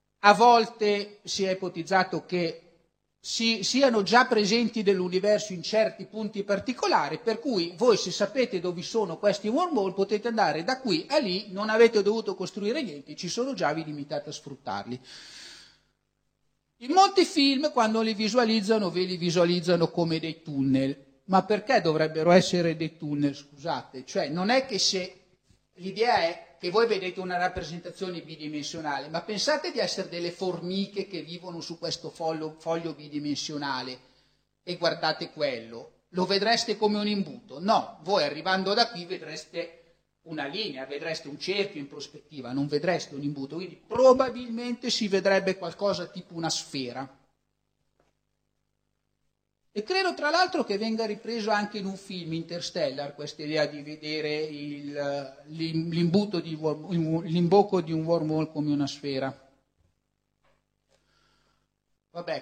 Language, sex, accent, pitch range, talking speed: Italian, male, native, 155-205 Hz, 140 wpm